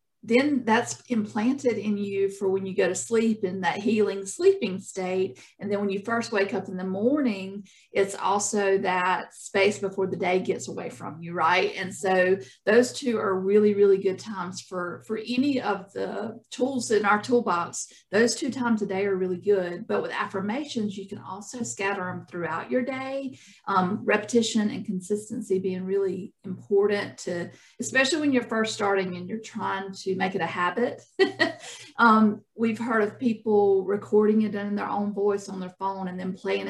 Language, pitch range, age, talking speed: English, 190-220 Hz, 50-69, 185 wpm